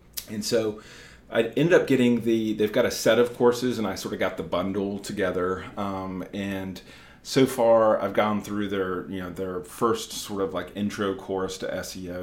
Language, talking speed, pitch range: English, 175 wpm, 90-105 Hz